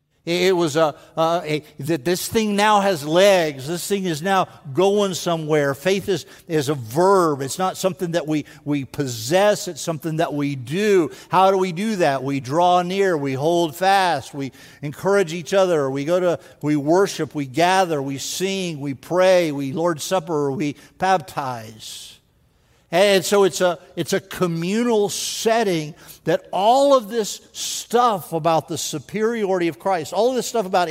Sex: male